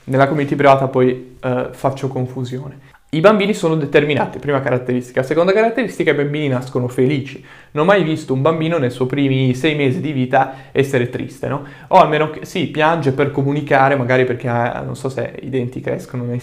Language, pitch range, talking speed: Italian, 130-165 Hz, 185 wpm